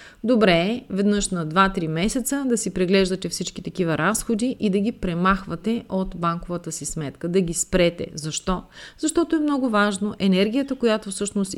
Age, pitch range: 30-49, 180-225 Hz